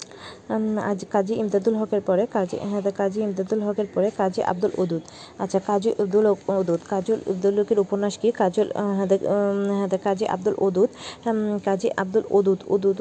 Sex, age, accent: female, 30-49, native